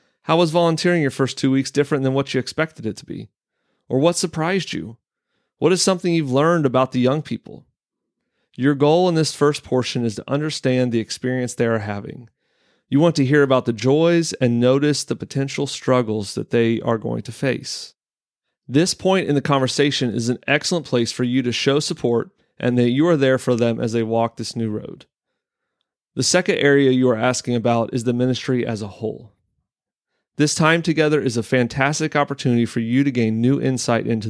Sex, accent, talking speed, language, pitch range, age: male, American, 200 wpm, English, 120-150 Hz, 30-49